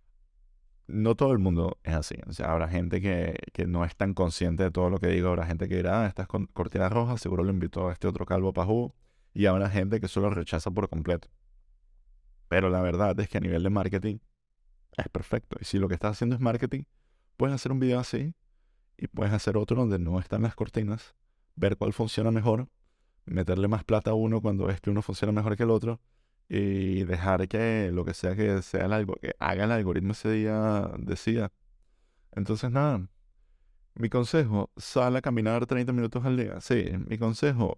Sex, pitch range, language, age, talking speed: male, 90-110 Hz, Spanish, 20-39, 205 wpm